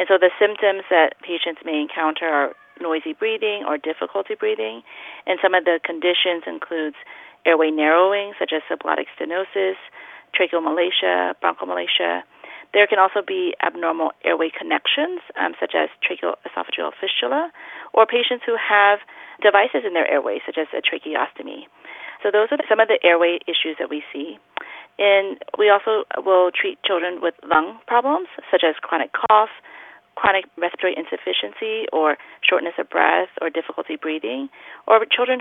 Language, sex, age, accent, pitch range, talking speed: English, female, 30-49, American, 170-230 Hz, 150 wpm